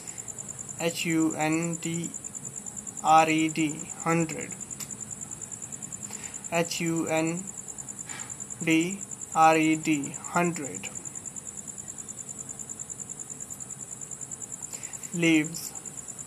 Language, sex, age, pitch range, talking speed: English, male, 20-39, 155-170 Hz, 60 wpm